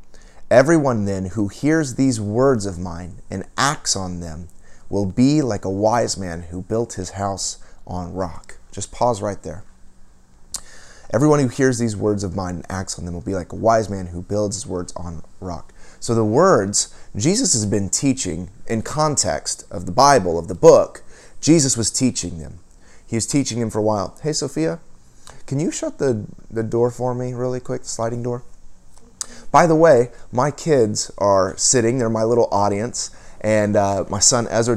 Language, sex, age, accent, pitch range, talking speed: English, male, 30-49, American, 95-125 Hz, 185 wpm